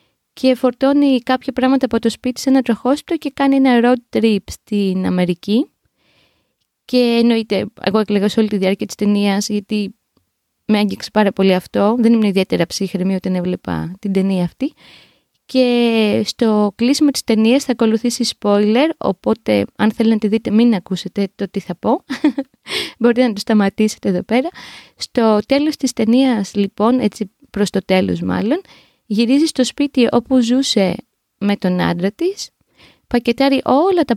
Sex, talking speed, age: female, 160 wpm, 20-39